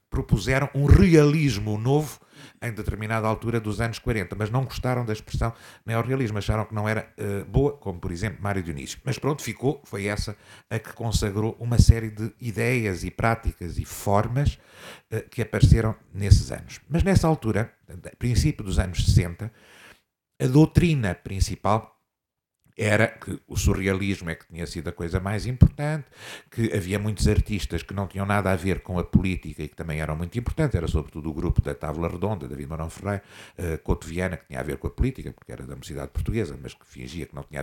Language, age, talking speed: Portuguese, 50-69, 190 wpm